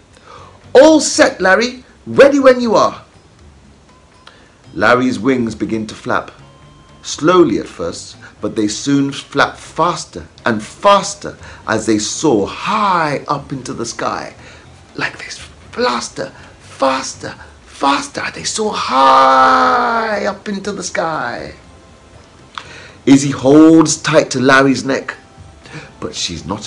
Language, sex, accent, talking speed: English, male, British, 115 wpm